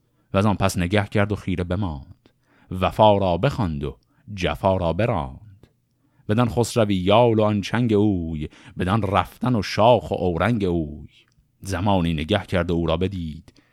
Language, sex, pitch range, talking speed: Persian, male, 85-120 Hz, 155 wpm